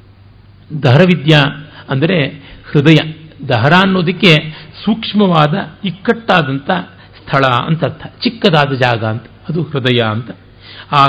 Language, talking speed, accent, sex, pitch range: Kannada, 85 wpm, native, male, 120-165 Hz